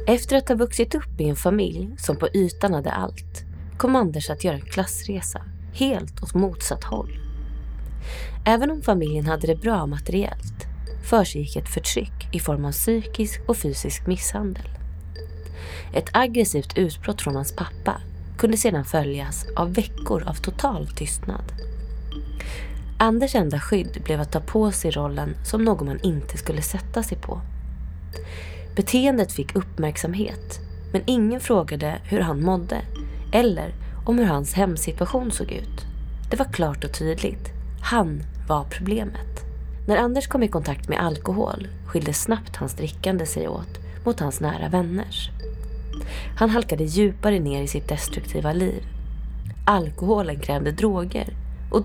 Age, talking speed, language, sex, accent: 30-49, 140 wpm, Swedish, female, native